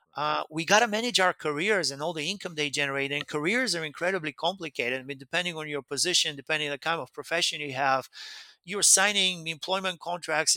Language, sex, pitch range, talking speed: English, male, 150-175 Hz, 205 wpm